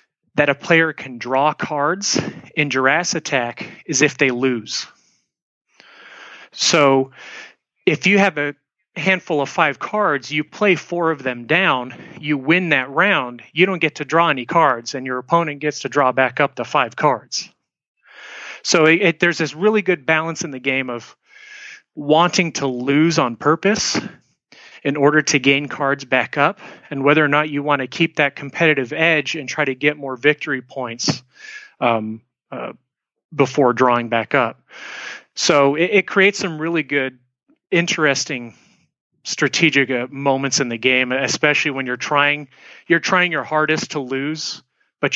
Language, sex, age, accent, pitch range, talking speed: English, male, 30-49, American, 130-165 Hz, 160 wpm